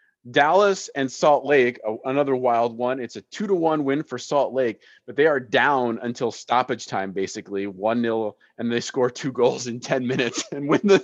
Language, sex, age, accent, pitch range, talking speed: English, male, 20-39, American, 115-155 Hz, 200 wpm